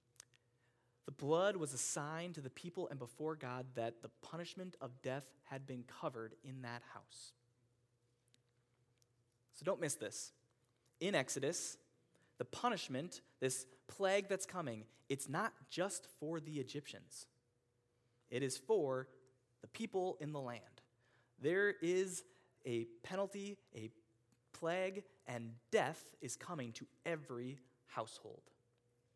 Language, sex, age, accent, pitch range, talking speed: English, male, 20-39, American, 120-150 Hz, 125 wpm